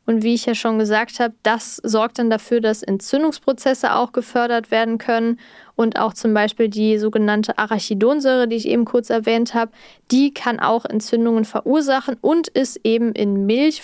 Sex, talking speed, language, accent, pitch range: female, 175 wpm, German, German, 220-250 Hz